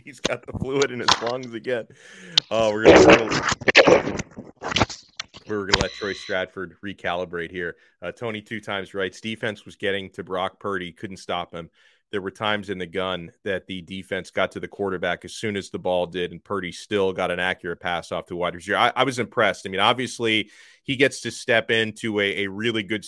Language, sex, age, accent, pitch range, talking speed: English, male, 30-49, American, 95-125 Hz, 200 wpm